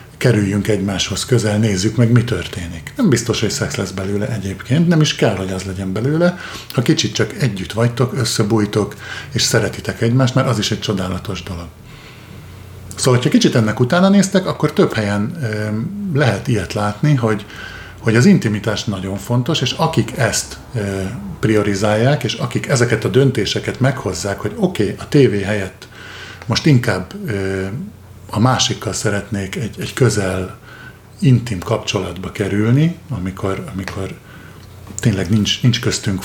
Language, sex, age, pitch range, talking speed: Hungarian, male, 50-69, 100-125 Hz, 140 wpm